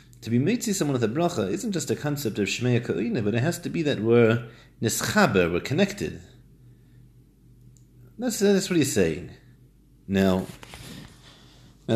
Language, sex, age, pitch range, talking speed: English, male, 30-49, 95-130 Hz, 160 wpm